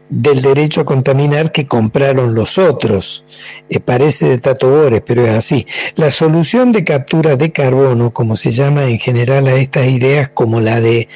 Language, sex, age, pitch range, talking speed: Spanish, male, 60-79, 125-150 Hz, 170 wpm